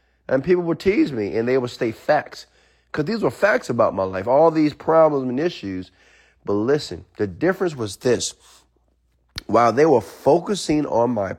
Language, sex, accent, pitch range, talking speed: English, male, American, 100-150 Hz, 180 wpm